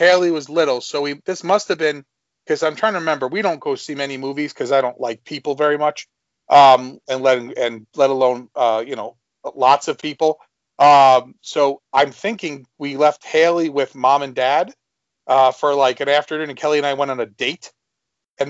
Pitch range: 125-150 Hz